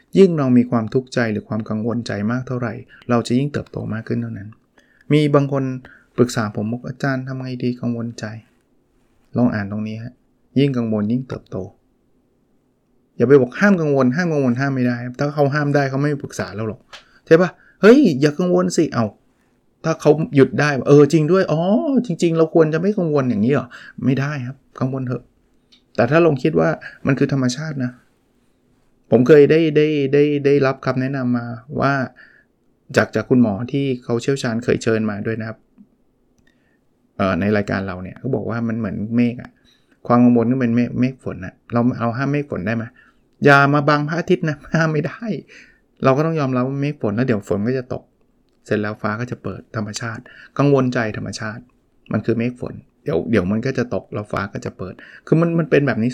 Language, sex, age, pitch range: Thai, male, 20-39, 115-145 Hz